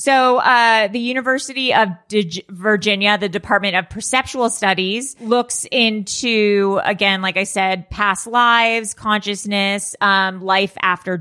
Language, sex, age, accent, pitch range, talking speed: English, female, 30-49, American, 195-240 Hz, 130 wpm